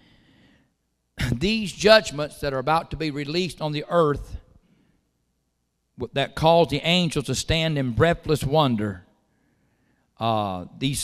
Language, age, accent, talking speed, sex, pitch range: English, 50-69, American, 120 wpm, male, 125-160 Hz